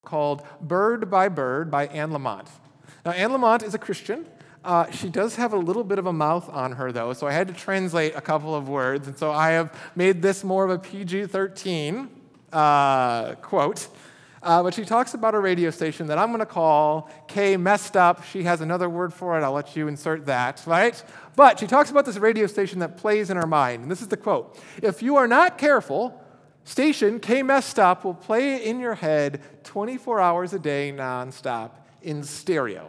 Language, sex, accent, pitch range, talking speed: English, male, American, 140-205 Hz, 200 wpm